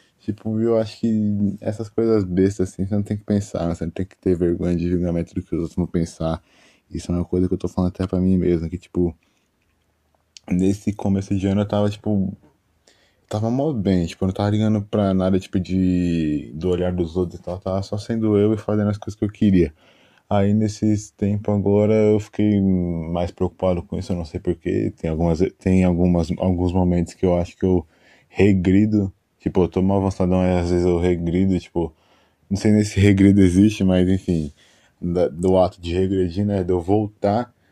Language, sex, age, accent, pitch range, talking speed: Portuguese, male, 20-39, Brazilian, 90-105 Hz, 210 wpm